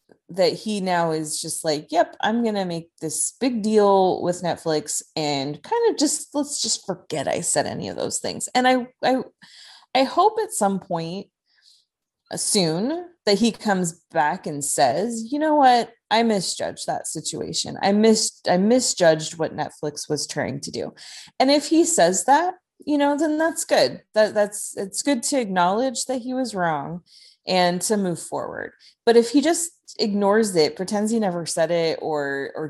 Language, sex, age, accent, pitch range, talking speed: English, female, 20-39, American, 165-250 Hz, 180 wpm